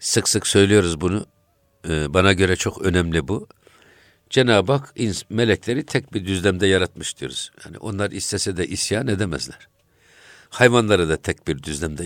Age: 60-79